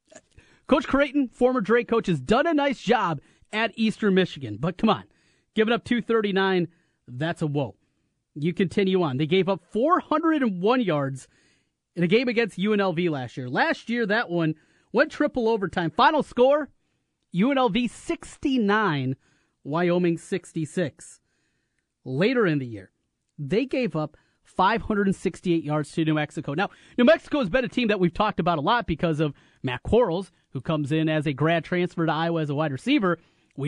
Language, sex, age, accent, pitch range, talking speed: English, male, 30-49, American, 155-225 Hz, 165 wpm